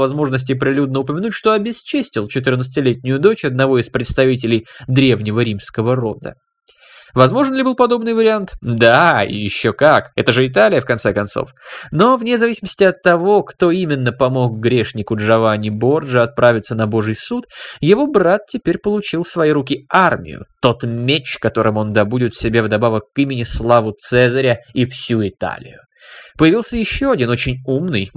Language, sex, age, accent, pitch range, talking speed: Russian, male, 20-39, native, 115-165 Hz, 150 wpm